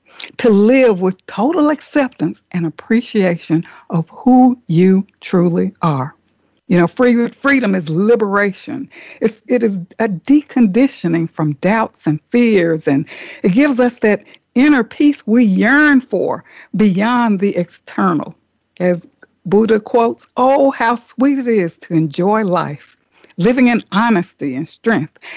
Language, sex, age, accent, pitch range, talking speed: English, female, 60-79, American, 180-255 Hz, 130 wpm